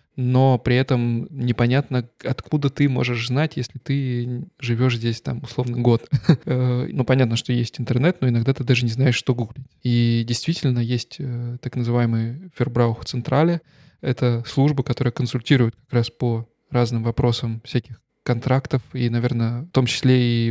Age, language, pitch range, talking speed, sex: 20-39, Russian, 120-135 Hz, 150 wpm, male